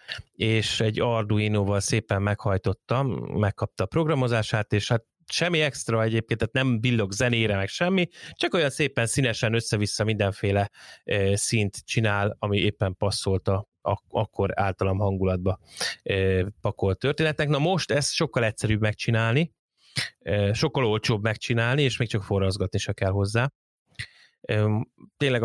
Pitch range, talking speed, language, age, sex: 100-115 Hz, 125 wpm, Hungarian, 20-39, male